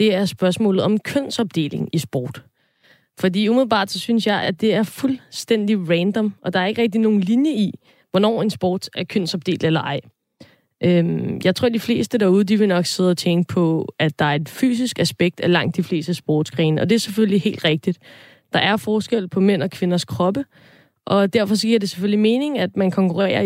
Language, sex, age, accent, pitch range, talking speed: Danish, female, 20-39, native, 175-215 Hz, 200 wpm